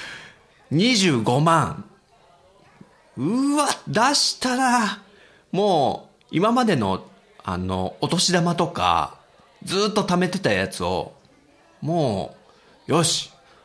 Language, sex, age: Japanese, male, 40-59